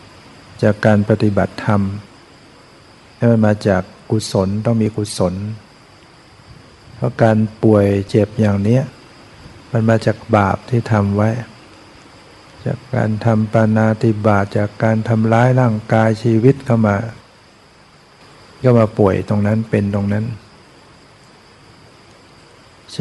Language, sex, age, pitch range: Thai, male, 60-79, 105-120 Hz